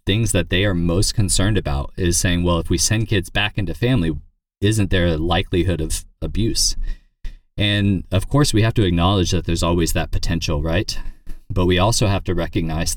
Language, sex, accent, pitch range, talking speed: English, male, American, 85-100 Hz, 195 wpm